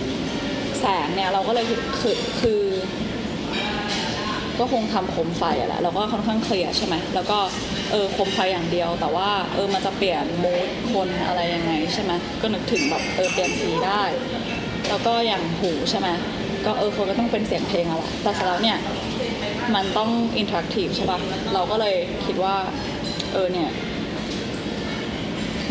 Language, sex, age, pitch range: Thai, female, 20-39, 185-225 Hz